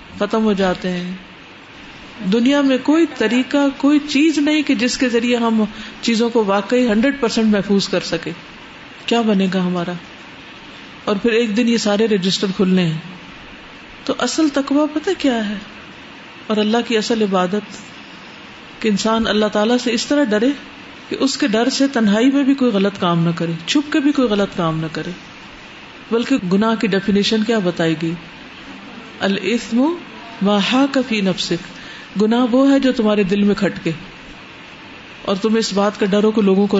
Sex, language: female, Urdu